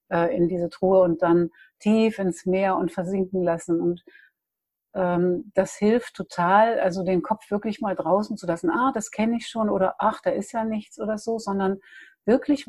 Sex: female